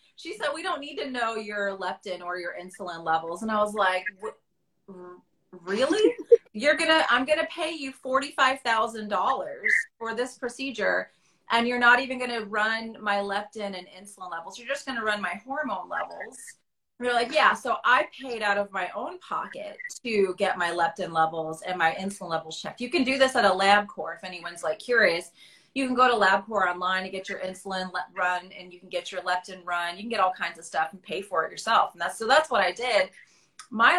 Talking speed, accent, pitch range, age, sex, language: 215 wpm, American, 185-245 Hz, 30-49, female, English